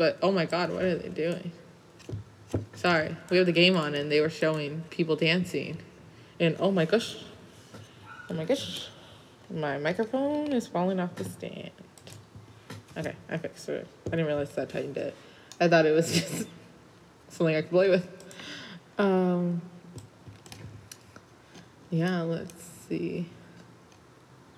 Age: 20-39